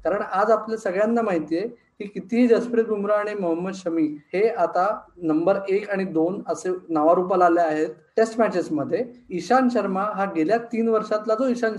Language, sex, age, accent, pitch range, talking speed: Marathi, male, 20-39, native, 175-230 Hz, 170 wpm